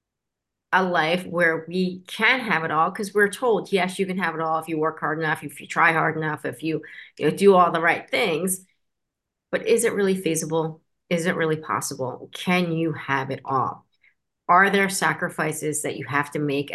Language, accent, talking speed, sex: English, American, 205 wpm, female